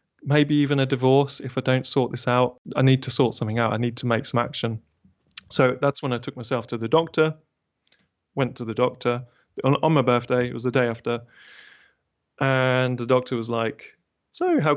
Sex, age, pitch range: male, 30-49, 120-140 Hz